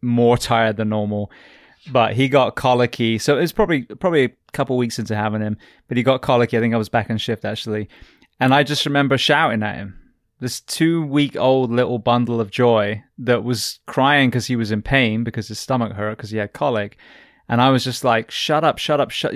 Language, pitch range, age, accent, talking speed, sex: English, 110-130 Hz, 20-39, British, 220 wpm, male